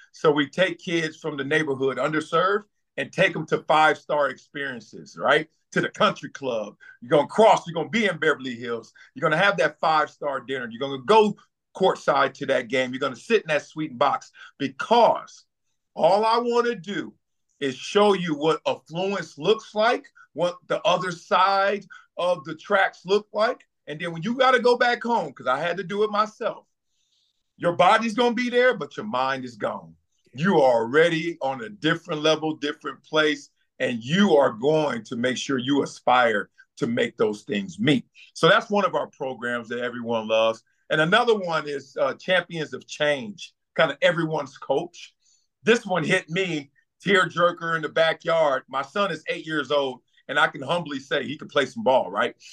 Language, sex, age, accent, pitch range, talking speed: English, male, 50-69, American, 145-205 Hz, 195 wpm